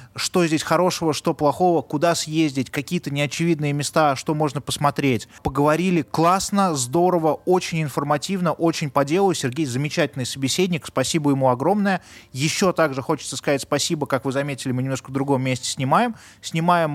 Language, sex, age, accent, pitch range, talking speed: Russian, male, 20-39, native, 130-165 Hz, 150 wpm